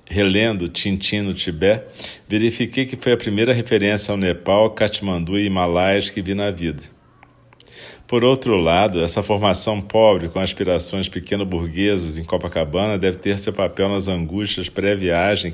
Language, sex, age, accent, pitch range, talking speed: Portuguese, male, 50-69, Brazilian, 90-105 Hz, 145 wpm